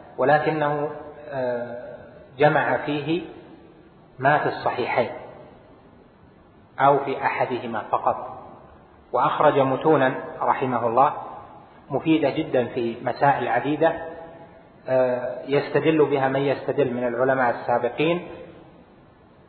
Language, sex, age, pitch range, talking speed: Arabic, male, 30-49, 125-150 Hz, 80 wpm